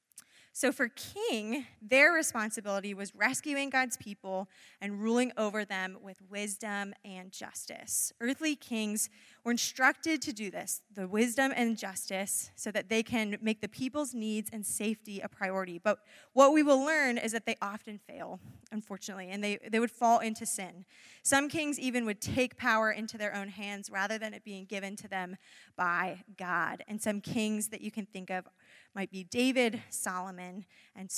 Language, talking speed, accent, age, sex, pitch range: English, 175 wpm, American, 20-39, female, 195-245 Hz